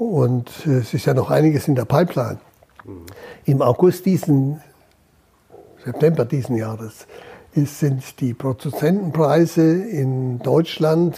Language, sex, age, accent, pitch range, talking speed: German, male, 60-79, German, 130-155 Hz, 105 wpm